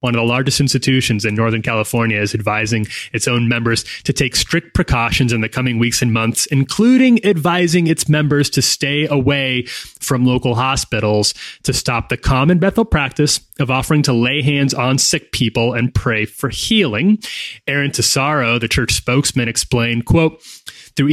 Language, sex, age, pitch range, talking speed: English, male, 30-49, 115-145 Hz, 170 wpm